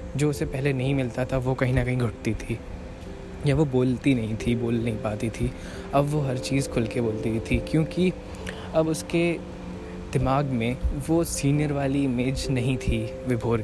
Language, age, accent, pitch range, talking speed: Hindi, 20-39, native, 110-135 Hz, 185 wpm